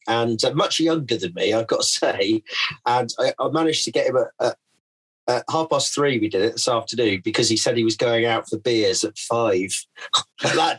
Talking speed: 220 wpm